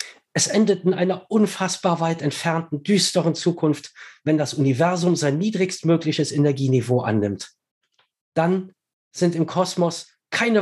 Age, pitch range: 40-59, 125-180 Hz